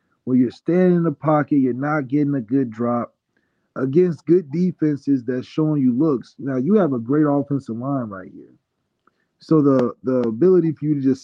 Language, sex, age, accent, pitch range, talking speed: English, male, 20-39, American, 125-150 Hz, 190 wpm